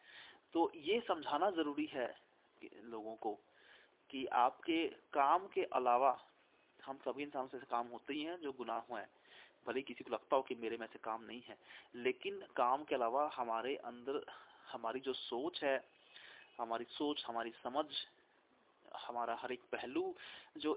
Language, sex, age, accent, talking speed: Hindi, male, 30-49, native, 155 wpm